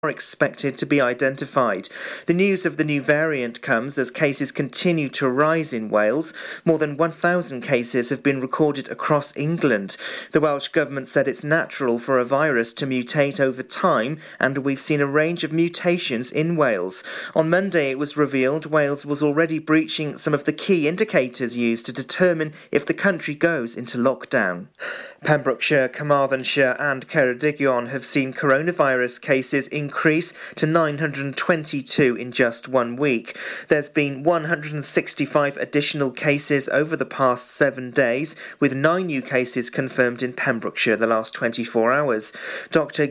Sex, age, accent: male, 40-59, British